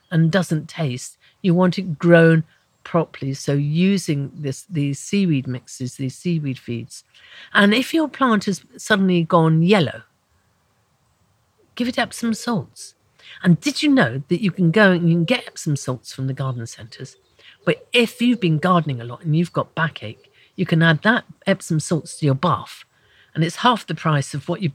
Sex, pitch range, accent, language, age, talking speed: female, 130-185 Hz, British, English, 50-69, 180 wpm